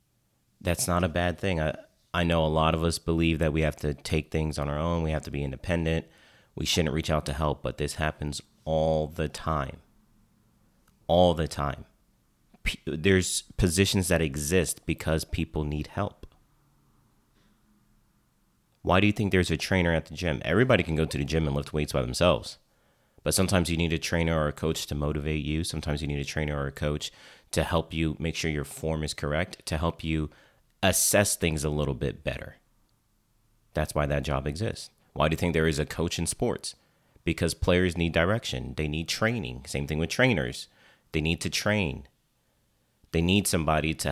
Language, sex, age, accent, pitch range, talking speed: English, male, 30-49, American, 75-85 Hz, 195 wpm